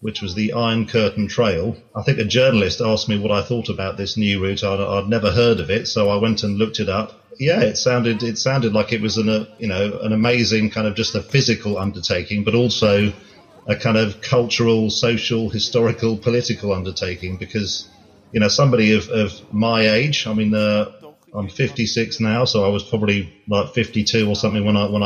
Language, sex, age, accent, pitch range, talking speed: German, male, 30-49, British, 105-115 Hz, 210 wpm